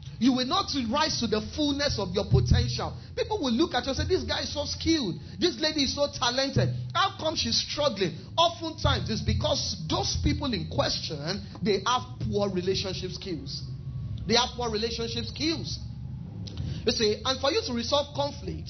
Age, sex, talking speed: 40-59, male, 180 wpm